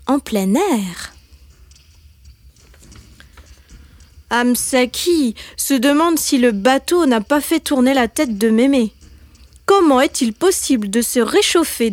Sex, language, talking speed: female, French, 115 wpm